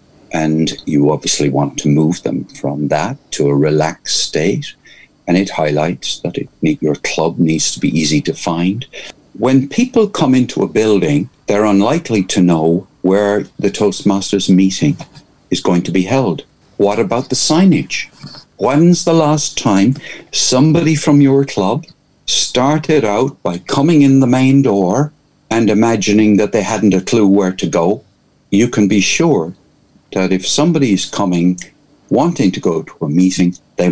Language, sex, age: English, male, 60-79